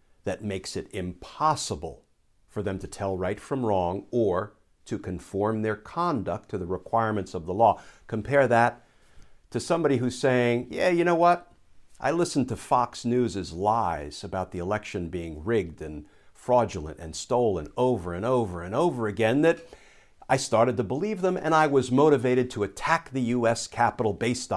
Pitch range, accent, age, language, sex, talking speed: 90-130 Hz, American, 50-69, English, male, 170 wpm